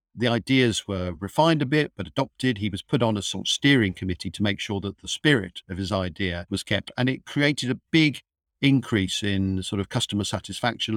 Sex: male